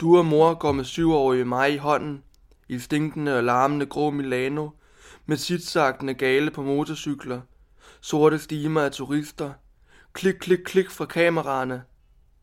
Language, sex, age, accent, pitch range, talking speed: Danish, male, 20-39, native, 135-160 Hz, 140 wpm